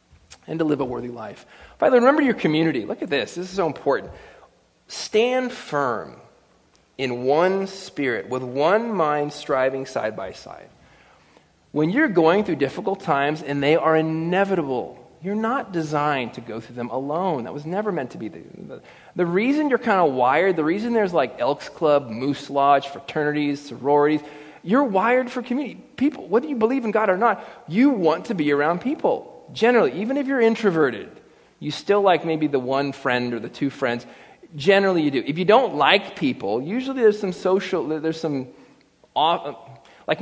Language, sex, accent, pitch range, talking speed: English, male, American, 140-210 Hz, 175 wpm